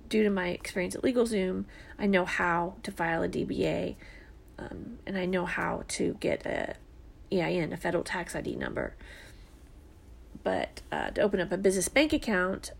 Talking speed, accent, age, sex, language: 170 wpm, American, 30-49, female, English